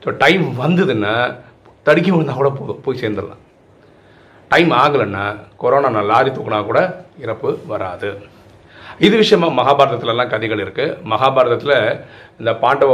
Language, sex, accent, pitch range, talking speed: Tamil, male, native, 110-145 Hz, 110 wpm